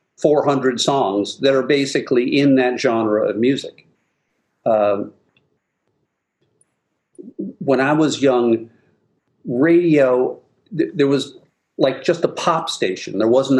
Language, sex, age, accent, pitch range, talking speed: English, male, 50-69, American, 115-145 Hz, 110 wpm